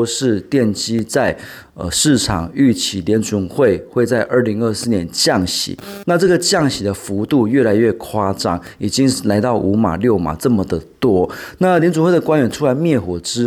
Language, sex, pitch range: Chinese, male, 100-130 Hz